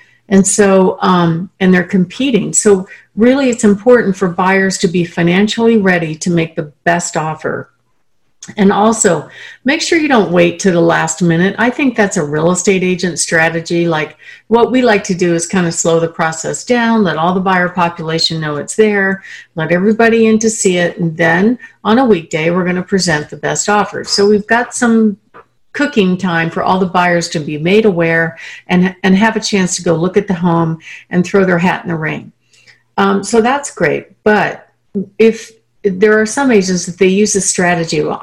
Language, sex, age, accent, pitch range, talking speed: English, female, 50-69, American, 170-215 Hz, 200 wpm